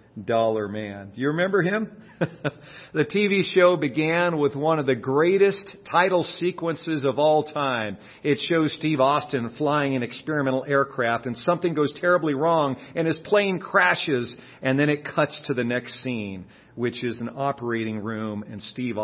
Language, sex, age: English, male, 50-69